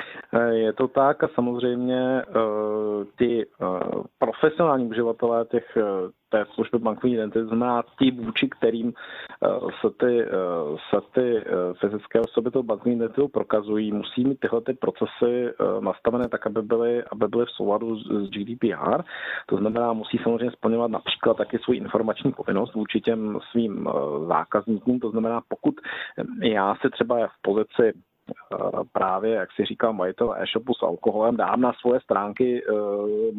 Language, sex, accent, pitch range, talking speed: Czech, male, native, 110-120 Hz, 140 wpm